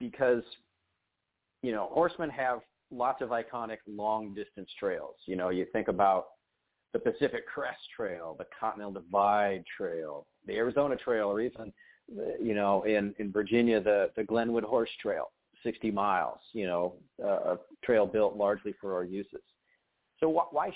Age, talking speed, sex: 40-59, 150 wpm, male